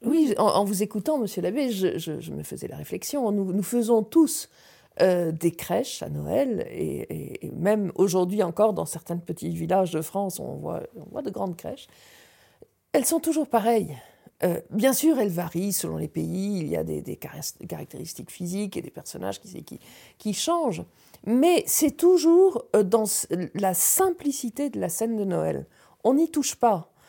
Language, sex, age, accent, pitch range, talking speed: French, female, 50-69, French, 180-265 Hz, 180 wpm